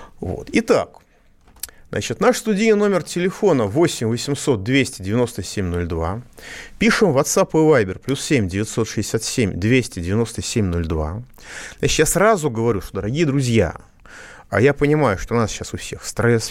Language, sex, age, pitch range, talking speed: Russian, male, 30-49, 100-150 Hz, 140 wpm